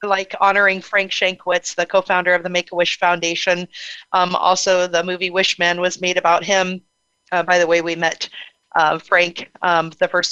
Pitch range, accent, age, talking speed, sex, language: 165-185 Hz, American, 40-59, 180 wpm, female, English